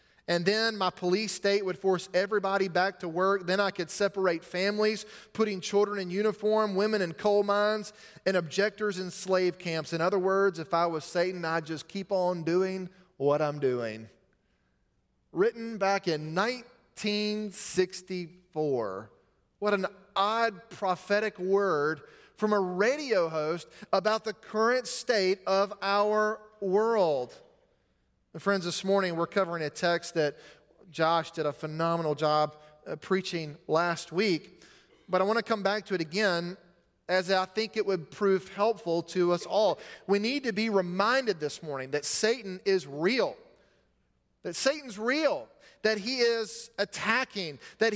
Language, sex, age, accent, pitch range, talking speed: English, male, 30-49, American, 180-220 Hz, 150 wpm